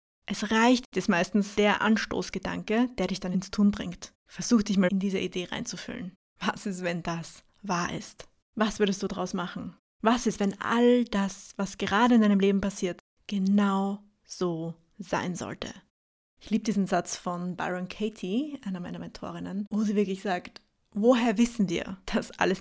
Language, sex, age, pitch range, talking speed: English, female, 20-39, 190-230 Hz, 170 wpm